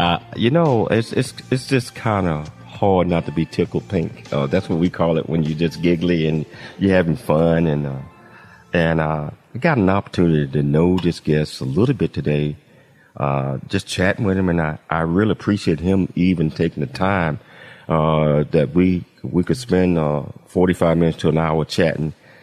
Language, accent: English, American